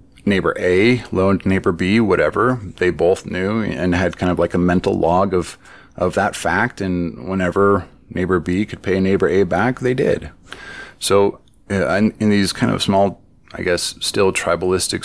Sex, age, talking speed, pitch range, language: male, 30-49, 175 wpm, 90-110 Hz, English